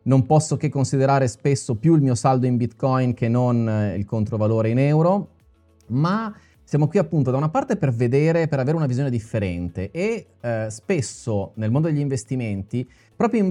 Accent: native